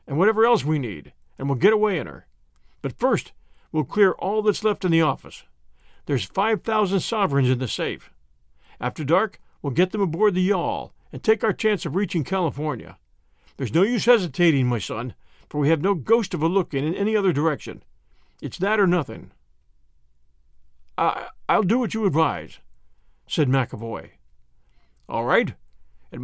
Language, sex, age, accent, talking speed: English, male, 50-69, American, 175 wpm